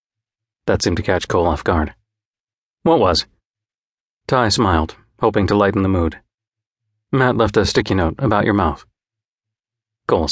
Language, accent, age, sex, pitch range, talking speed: English, American, 40-59, male, 100-115 Hz, 145 wpm